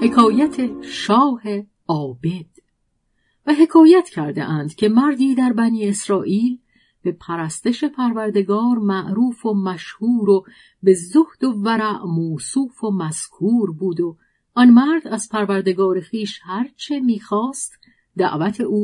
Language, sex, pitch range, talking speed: Persian, female, 185-250 Hz, 120 wpm